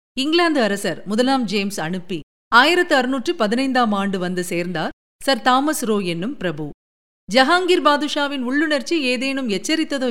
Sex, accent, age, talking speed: female, native, 50-69, 115 wpm